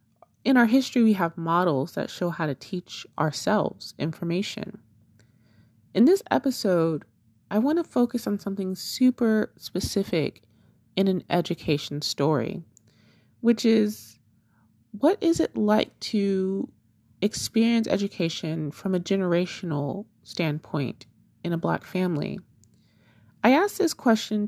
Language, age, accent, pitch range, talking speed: English, 30-49, American, 145-210 Hz, 120 wpm